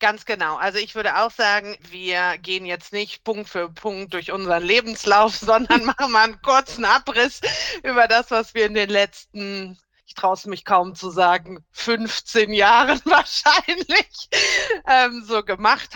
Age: 30-49